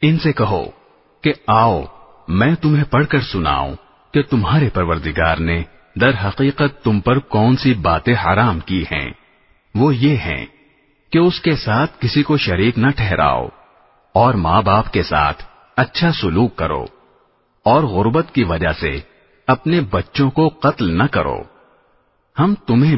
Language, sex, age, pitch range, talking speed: Arabic, male, 50-69, 90-145 Hz, 150 wpm